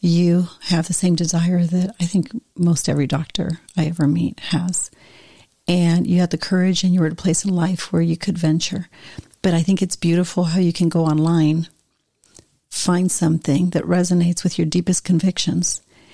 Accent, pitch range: American, 165-185 Hz